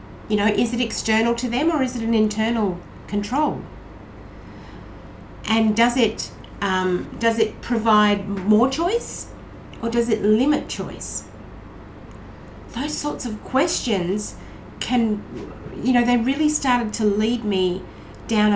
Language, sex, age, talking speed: English, female, 50-69, 135 wpm